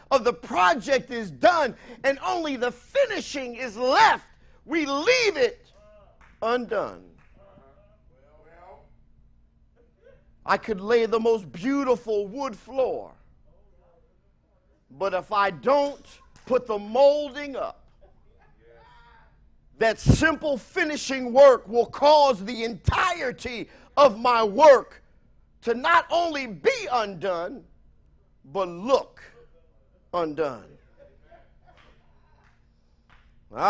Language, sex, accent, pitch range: English, male, American, 220-295 Hz